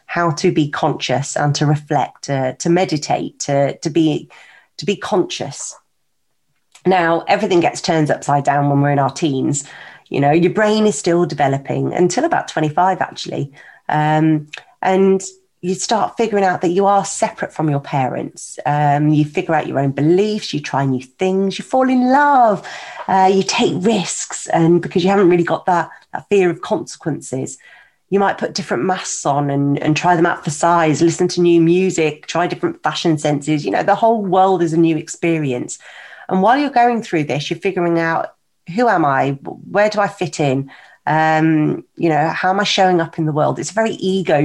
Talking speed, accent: 195 wpm, British